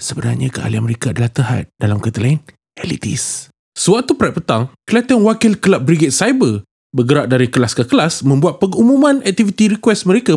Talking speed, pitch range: 150 wpm, 130-195 Hz